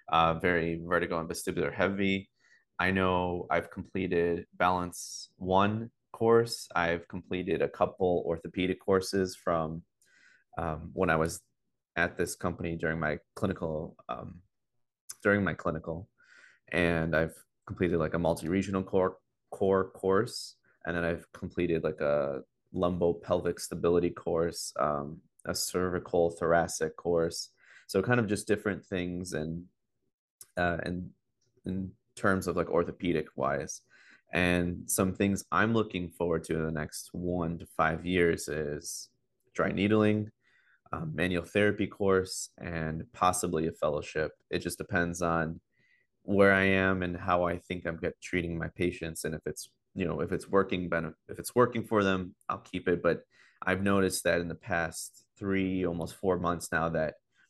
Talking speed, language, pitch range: 150 wpm, English, 85-95 Hz